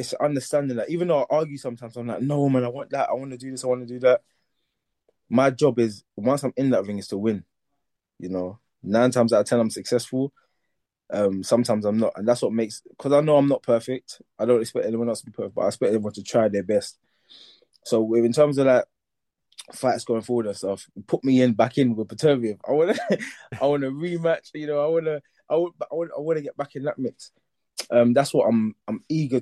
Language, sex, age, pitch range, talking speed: English, male, 20-39, 105-135 Hz, 240 wpm